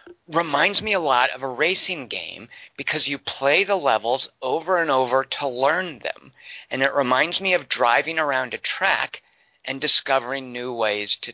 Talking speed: 175 wpm